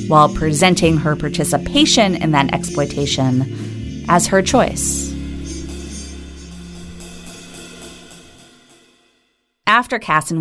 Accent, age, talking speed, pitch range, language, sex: American, 30-49, 70 wpm, 135-175 Hz, English, female